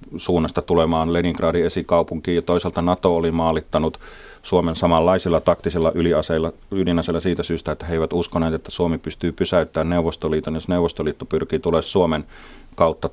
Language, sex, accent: Finnish, male, native